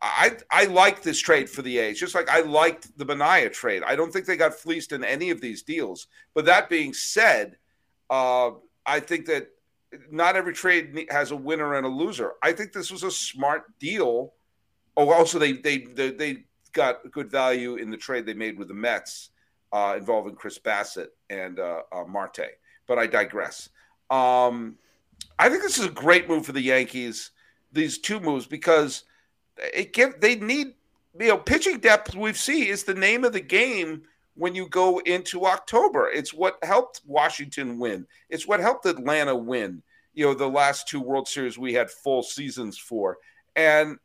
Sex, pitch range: male, 135-210 Hz